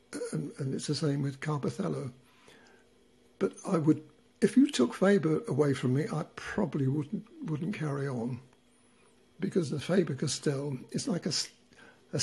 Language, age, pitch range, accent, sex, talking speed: English, 60-79, 140-180 Hz, British, male, 150 wpm